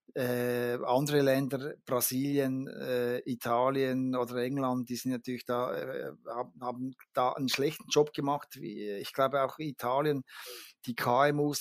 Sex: male